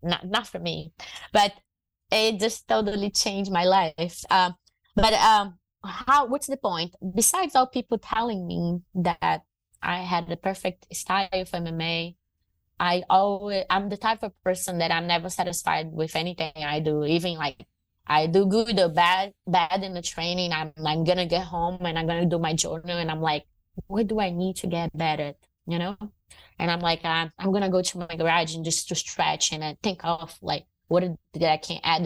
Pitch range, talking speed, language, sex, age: 155-185 Hz, 200 wpm, English, female, 20-39